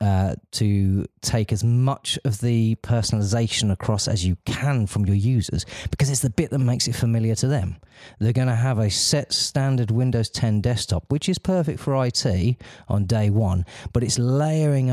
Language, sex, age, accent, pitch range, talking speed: English, male, 30-49, British, 100-125 Hz, 185 wpm